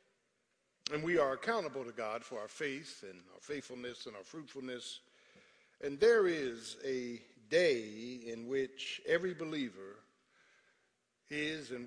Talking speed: 130 wpm